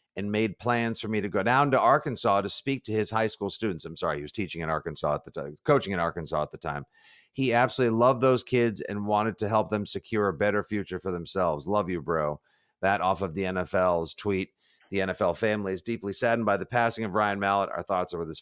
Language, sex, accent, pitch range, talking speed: English, male, American, 95-110 Hz, 245 wpm